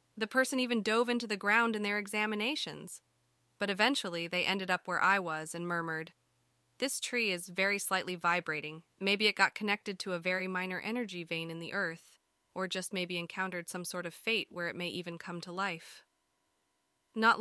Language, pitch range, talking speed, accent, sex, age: English, 170-205 Hz, 190 wpm, American, female, 20-39